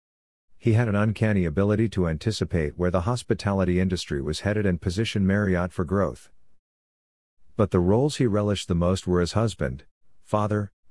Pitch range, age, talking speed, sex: 85-105 Hz, 50-69, 160 wpm, male